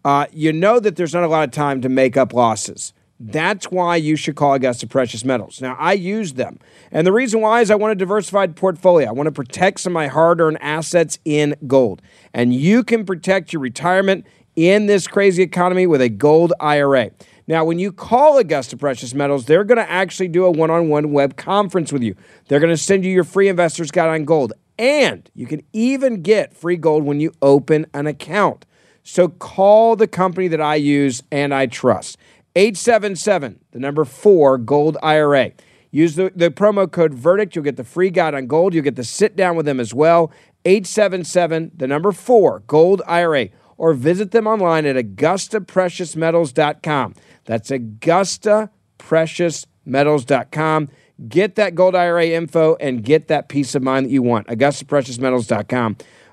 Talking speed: 180 wpm